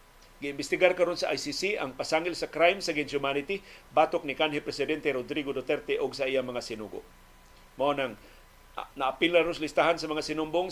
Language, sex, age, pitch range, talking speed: Filipino, male, 50-69, 135-165 Hz, 170 wpm